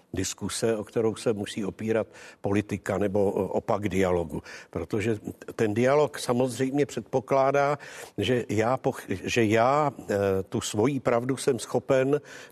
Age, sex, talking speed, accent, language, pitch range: 60-79, male, 120 wpm, native, Czech, 115-140 Hz